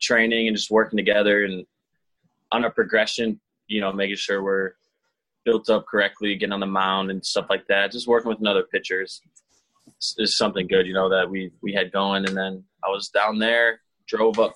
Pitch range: 95-110 Hz